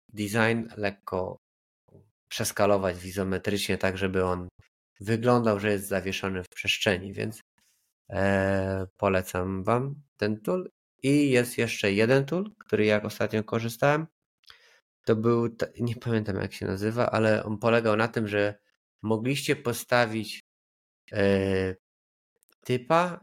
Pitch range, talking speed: 100-120 Hz, 120 wpm